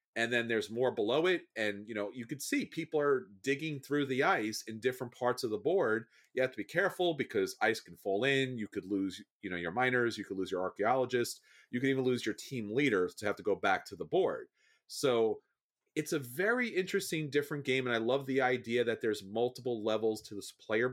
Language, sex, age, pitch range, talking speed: English, male, 30-49, 110-160 Hz, 230 wpm